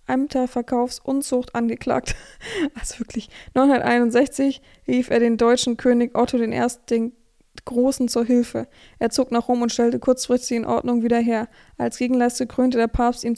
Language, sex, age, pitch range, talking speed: German, female, 20-39, 235-250 Hz, 155 wpm